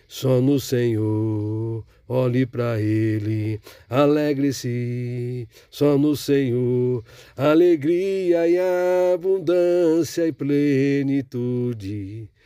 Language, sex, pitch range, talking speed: Portuguese, male, 115-165 Hz, 70 wpm